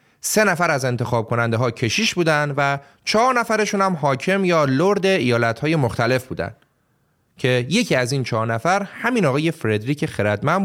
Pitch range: 120-190 Hz